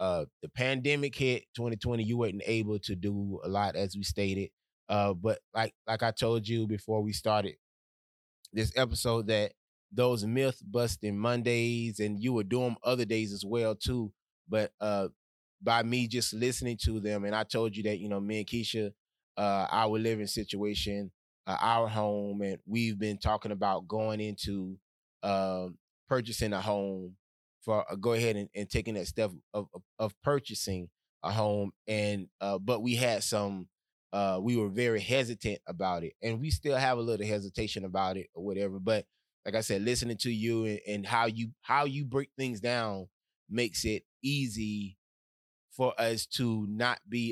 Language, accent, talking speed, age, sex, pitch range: English, American, 175 wpm, 20-39, male, 100-120 Hz